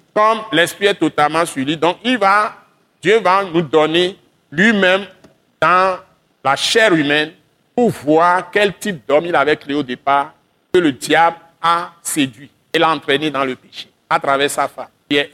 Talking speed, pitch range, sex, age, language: 170 wpm, 150-205 Hz, male, 60-79, French